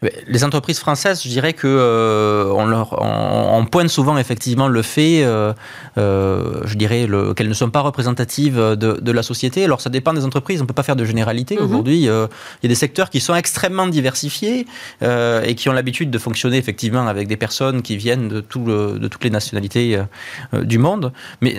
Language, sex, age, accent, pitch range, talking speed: French, male, 20-39, French, 115-155 Hz, 210 wpm